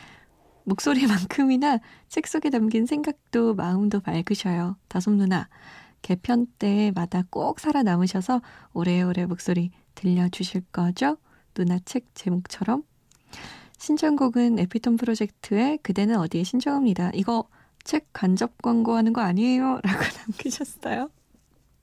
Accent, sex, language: native, female, Korean